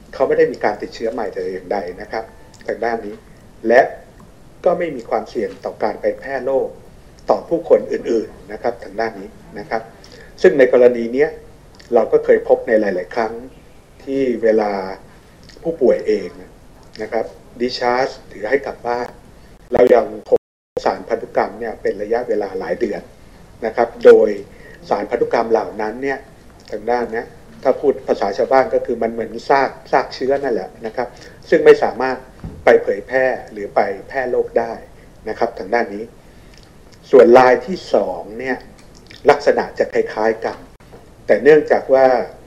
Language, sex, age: Thai, male, 60-79